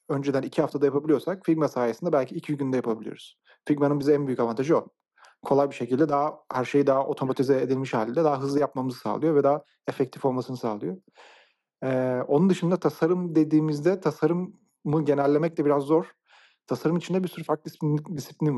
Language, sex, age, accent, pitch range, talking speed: Turkish, male, 40-59, native, 125-155 Hz, 165 wpm